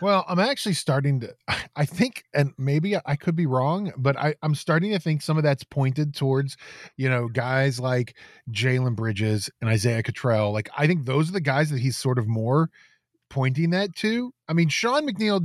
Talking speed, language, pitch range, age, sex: 200 wpm, English, 135-180 Hz, 20-39, male